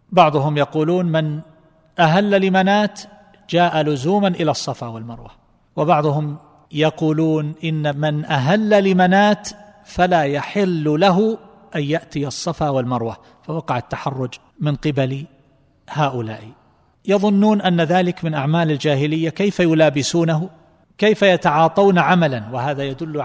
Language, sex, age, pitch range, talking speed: Arabic, male, 40-59, 140-175 Hz, 105 wpm